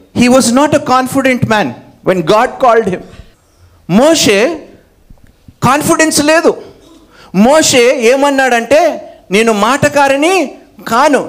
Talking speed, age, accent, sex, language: 115 wpm, 50-69, native, male, Telugu